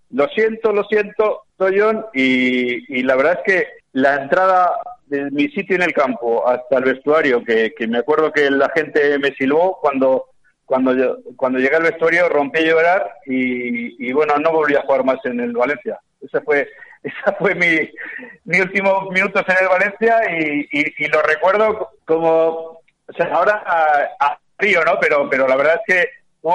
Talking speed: 190 wpm